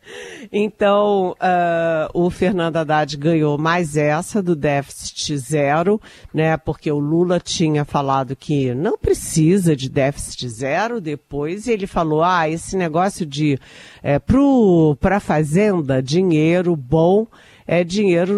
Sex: female